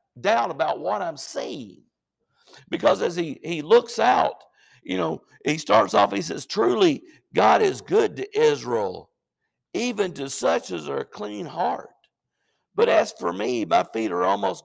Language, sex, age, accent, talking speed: English, male, 60-79, American, 165 wpm